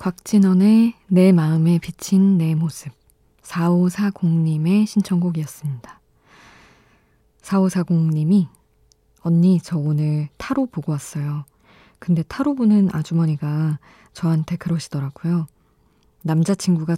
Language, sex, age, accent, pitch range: Korean, female, 20-39, native, 150-180 Hz